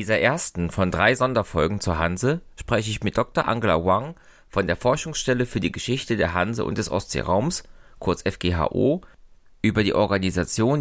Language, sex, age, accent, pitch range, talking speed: German, male, 30-49, German, 90-125 Hz, 165 wpm